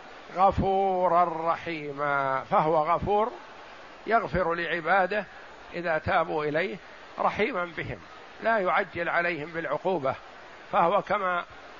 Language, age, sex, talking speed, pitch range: Arabic, 60-79, male, 85 wpm, 160-205 Hz